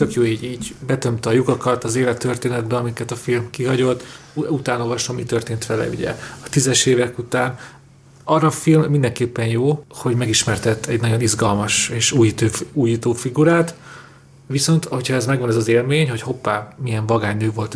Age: 40-59